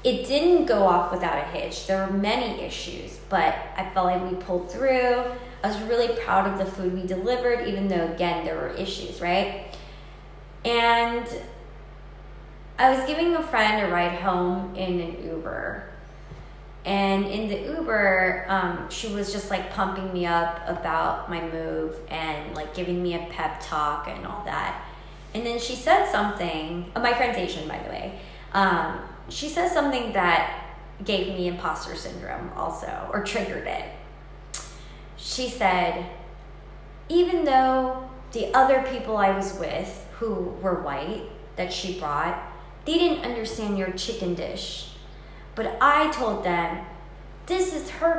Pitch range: 180-250 Hz